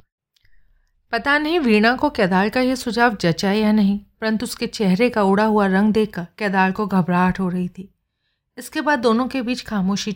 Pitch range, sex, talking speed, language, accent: 190-235 Hz, female, 185 wpm, Hindi, native